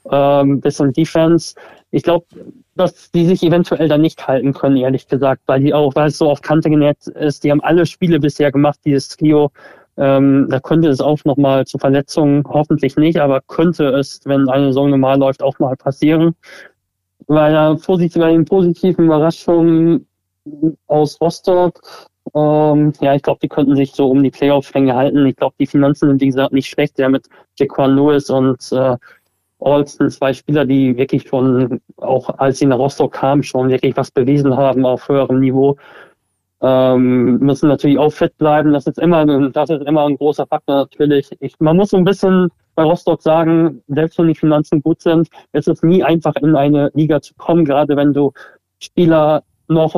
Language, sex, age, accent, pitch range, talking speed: German, male, 20-39, German, 135-160 Hz, 185 wpm